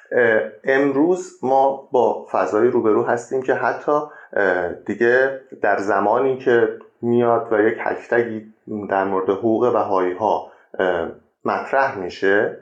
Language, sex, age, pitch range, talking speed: Persian, male, 30-49, 105-135 Hz, 110 wpm